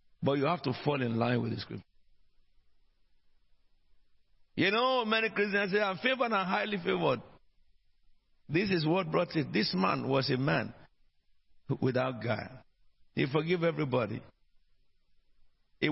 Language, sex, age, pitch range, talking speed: English, male, 50-69, 115-165 Hz, 135 wpm